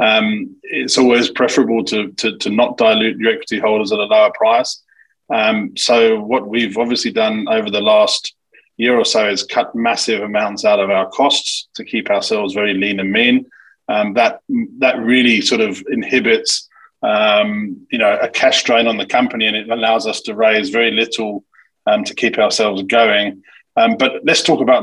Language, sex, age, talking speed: English, male, 20-39, 185 wpm